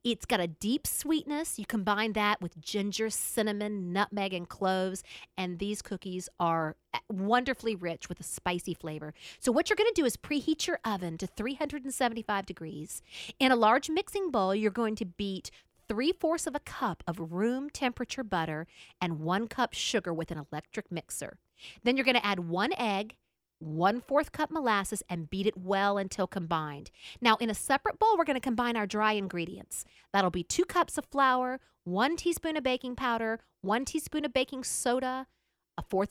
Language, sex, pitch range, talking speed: English, female, 180-265 Hz, 180 wpm